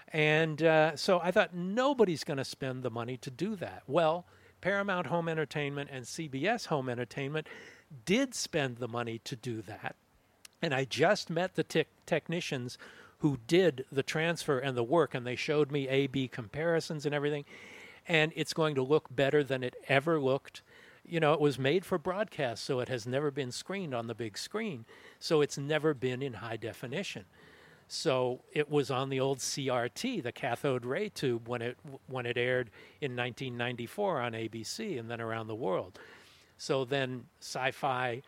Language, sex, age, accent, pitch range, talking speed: English, male, 60-79, American, 125-165 Hz, 175 wpm